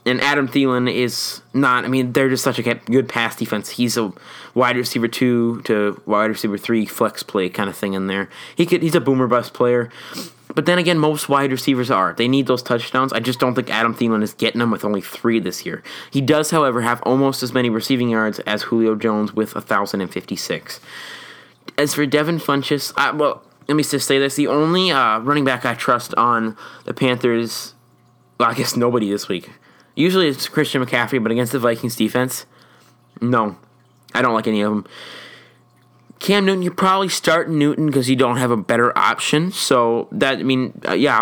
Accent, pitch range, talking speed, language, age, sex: American, 115-140 Hz, 200 wpm, English, 20-39, male